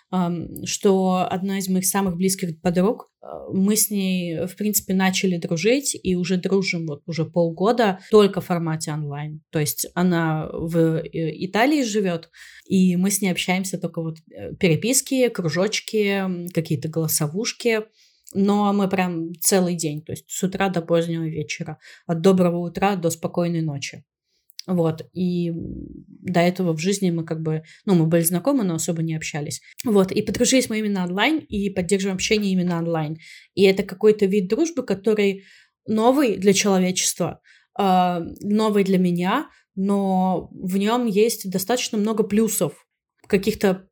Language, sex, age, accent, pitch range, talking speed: Russian, female, 20-39, native, 170-210 Hz, 145 wpm